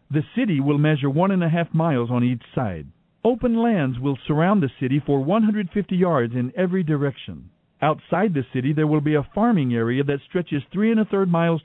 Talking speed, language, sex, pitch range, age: 205 wpm, English, male, 140-200 Hz, 50-69